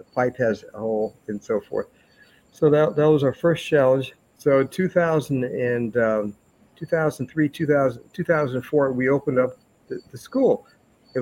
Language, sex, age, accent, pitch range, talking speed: English, male, 50-69, American, 125-155 Hz, 135 wpm